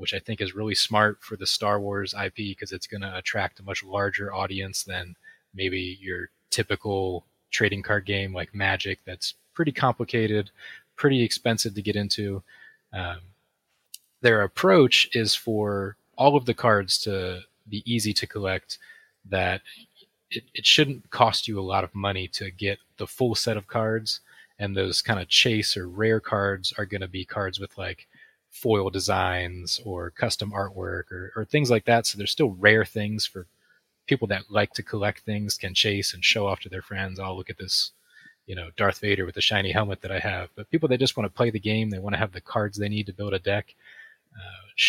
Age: 20-39